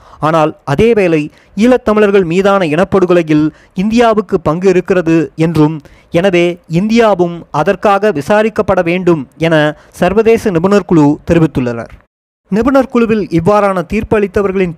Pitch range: 150-200 Hz